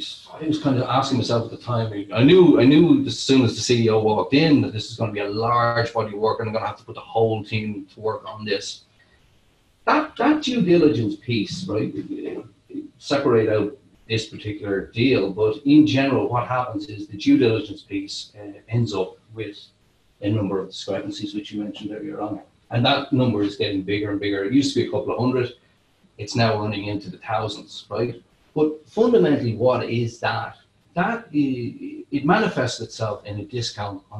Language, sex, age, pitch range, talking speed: English, male, 40-59, 105-135 Hz, 200 wpm